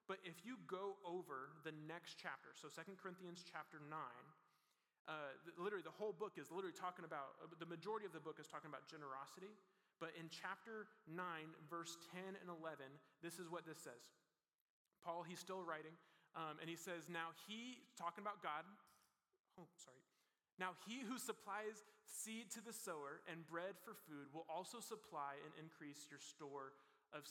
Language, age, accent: English, 30-49, American